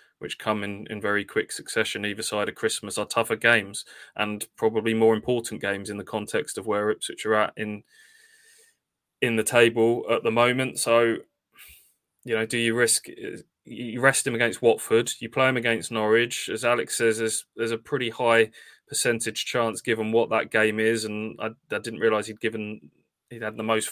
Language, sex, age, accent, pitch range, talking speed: English, male, 20-39, British, 105-115 Hz, 190 wpm